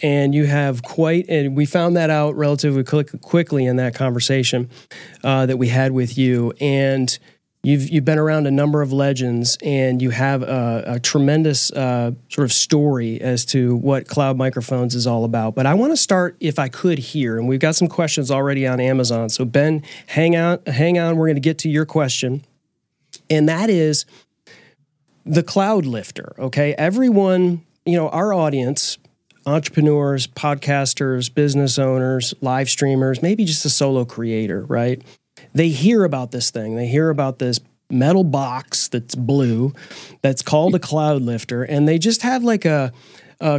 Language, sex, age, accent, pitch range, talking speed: English, male, 30-49, American, 125-155 Hz, 175 wpm